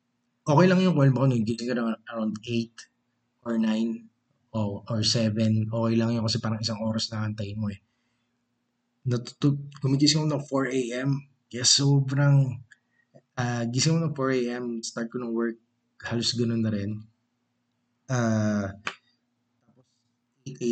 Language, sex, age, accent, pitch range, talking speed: Filipino, male, 20-39, native, 110-125 Hz, 130 wpm